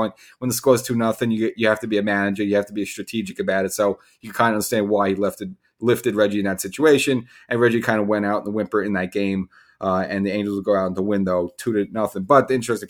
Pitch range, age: 100-120 Hz, 30-49